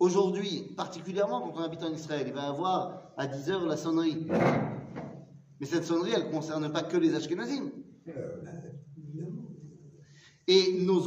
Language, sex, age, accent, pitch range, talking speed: French, male, 40-59, French, 150-190 Hz, 145 wpm